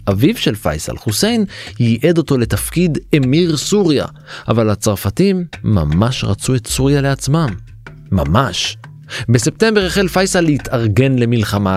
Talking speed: 110 wpm